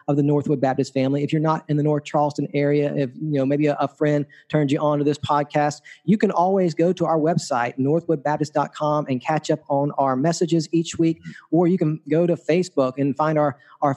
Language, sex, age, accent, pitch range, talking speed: English, male, 40-59, American, 145-170 Hz, 225 wpm